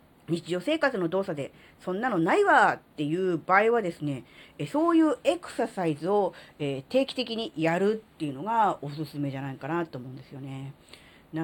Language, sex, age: Japanese, female, 40-59